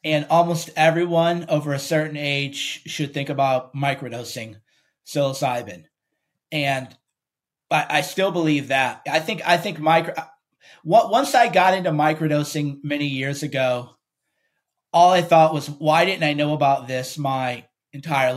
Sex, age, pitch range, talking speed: male, 30-49, 135-160 Hz, 145 wpm